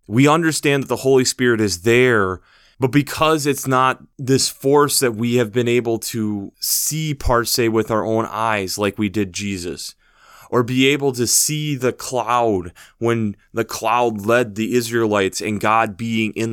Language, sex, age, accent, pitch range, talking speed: English, male, 20-39, American, 110-135 Hz, 175 wpm